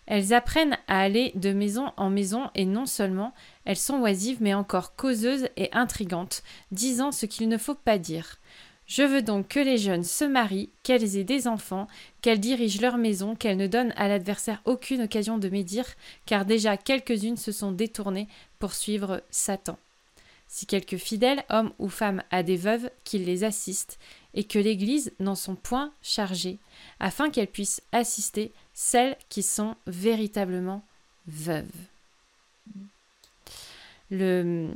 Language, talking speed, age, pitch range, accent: French, 155 wpm, 20-39, 190-235 Hz, French